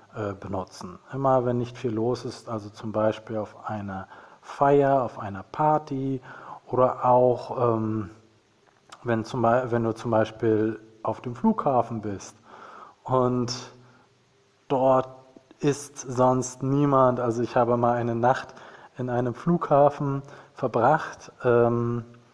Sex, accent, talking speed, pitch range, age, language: male, German, 120 wpm, 115-140 Hz, 40-59, German